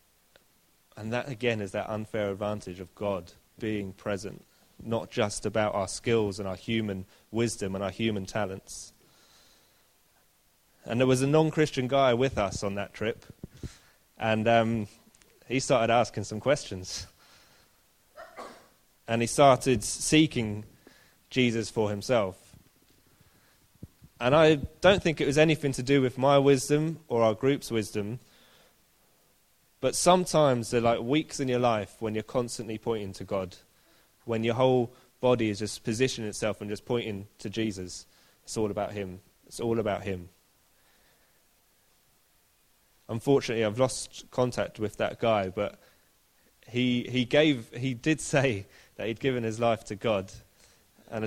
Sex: male